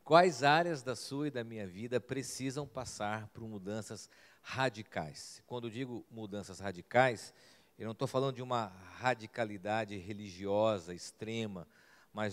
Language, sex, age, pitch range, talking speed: Portuguese, male, 50-69, 105-130 Hz, 135 wpm